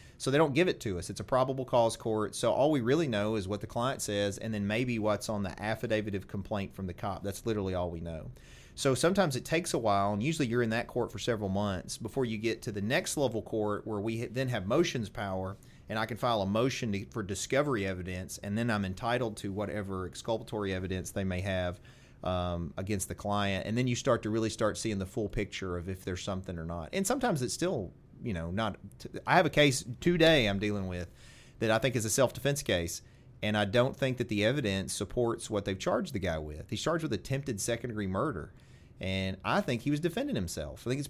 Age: 30-49